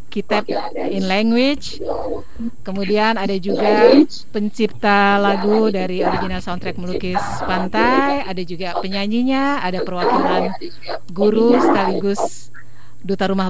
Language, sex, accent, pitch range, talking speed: Indonesian, female, native, 180-220 Hz, 100 wpm